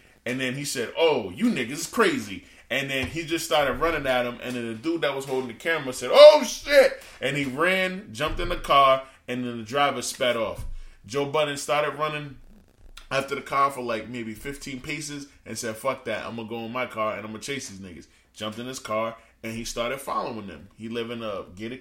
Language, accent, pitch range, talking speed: English, American, 115-185 Hz, 235 wpm